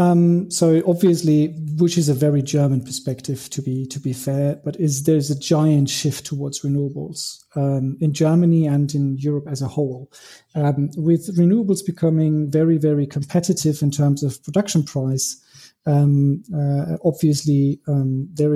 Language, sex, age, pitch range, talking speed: English, male, 40-59, 140-155 Hz, 160 wpm